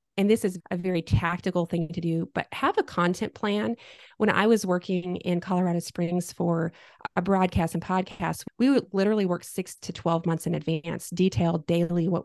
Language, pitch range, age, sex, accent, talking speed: English, 175-215 Hz, 30-49, female, American, 190 wpm